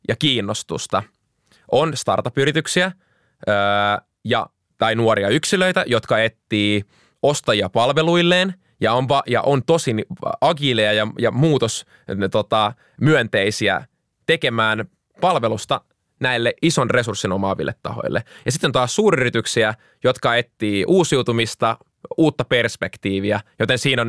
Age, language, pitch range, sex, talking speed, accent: 20-39, Finnish, 105-140 Hz, male, 105 wpm, native